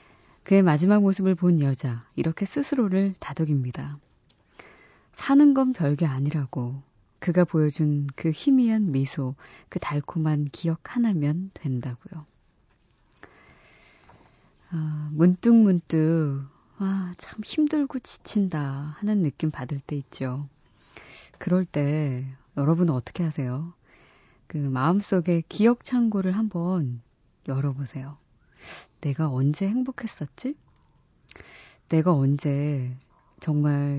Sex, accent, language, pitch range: female, native, Korean, 140-195 Hz